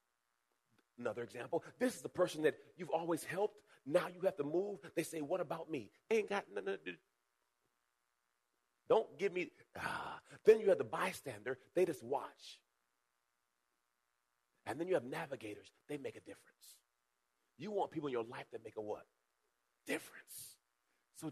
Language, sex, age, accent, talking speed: English, male, 40-59, American, 165 wpm